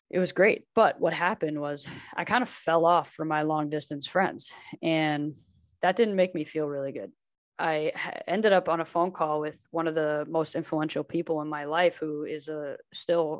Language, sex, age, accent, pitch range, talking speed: English, female, 20-39, American, 155-190 Hz, 205 wpm